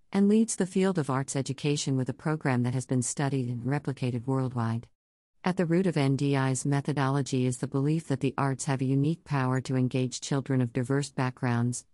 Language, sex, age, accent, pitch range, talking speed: English, female, 50-69, American, 130-165 Hz, 195 wpm